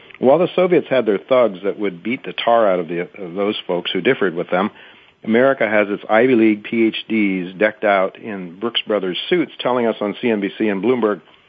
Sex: male